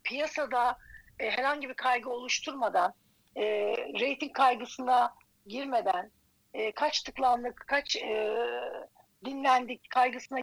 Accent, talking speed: native, 100 wpm